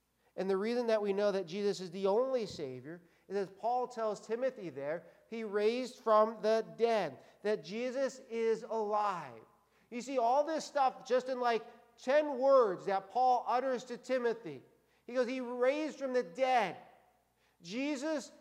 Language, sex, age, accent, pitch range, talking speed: English, male, 50-69, American, 190-250 Hz, 165 wpm